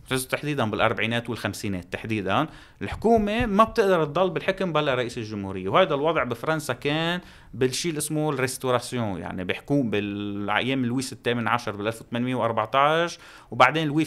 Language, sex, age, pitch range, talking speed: Arabic, male, 30-49, 115-175 Hz, 130 wpm